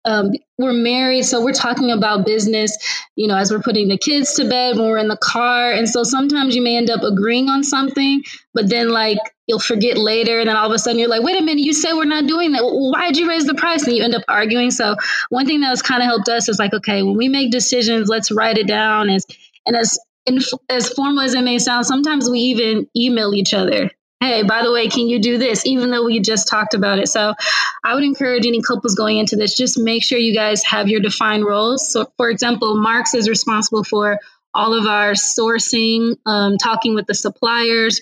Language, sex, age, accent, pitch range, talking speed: English, female, 20-39, American, 215-250 Hz, 240 wpm